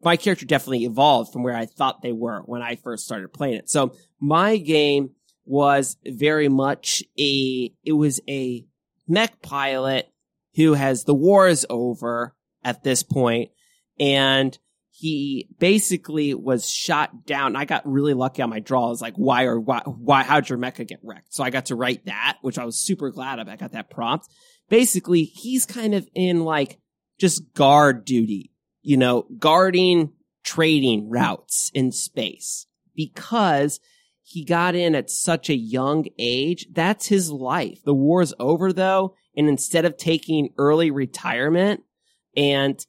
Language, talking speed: English, 165 wpm